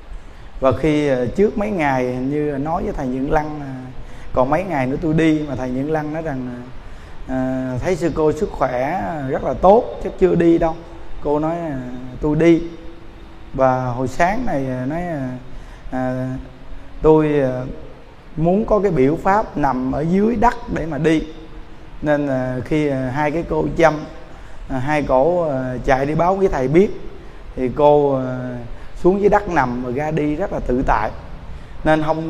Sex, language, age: male, Vietnamese, 20-39